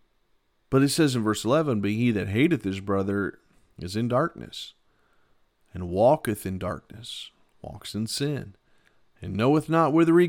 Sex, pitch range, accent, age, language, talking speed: male, 110-135 Hz, American, 40-59, English, 155 wpm